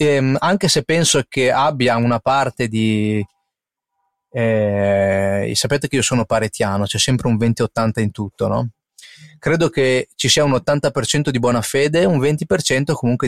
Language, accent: Italian, native